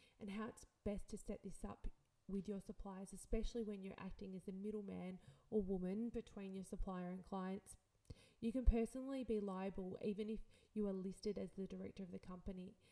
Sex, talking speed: female, 190 wpm